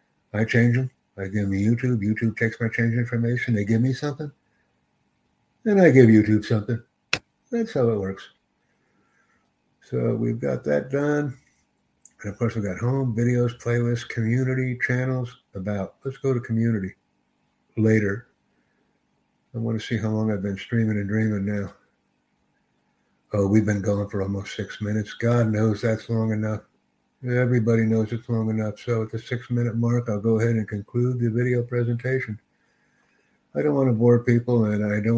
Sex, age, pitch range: male, 60-79, 105-120 Hz